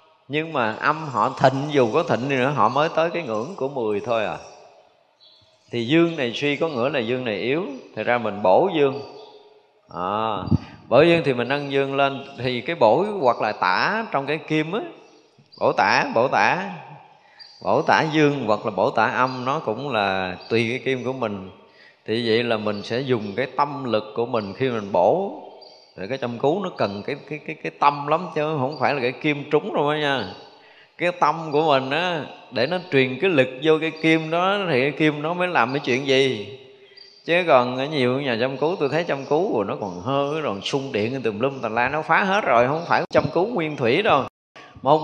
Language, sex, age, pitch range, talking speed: Vietnamese, male, 20-39, 120-155 Hz, 215 wpm